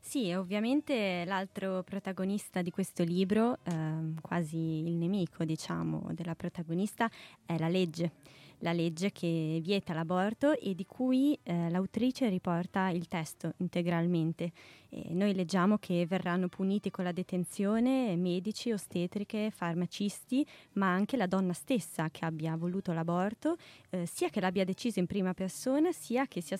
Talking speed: 140 wpm